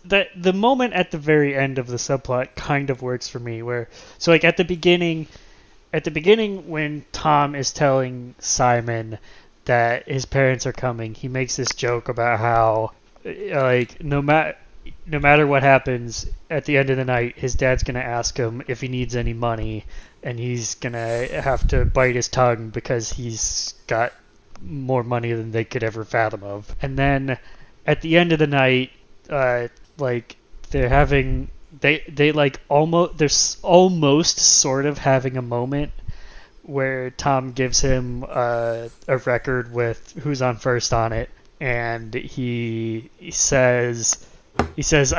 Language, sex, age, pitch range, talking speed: English, male, 20-39, 120-145 Hz, 165 wpm